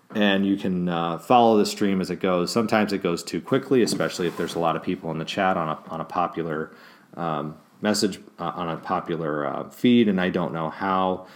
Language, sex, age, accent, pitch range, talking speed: English, male, 30-49, American, 85-110 Hz, 220 wpm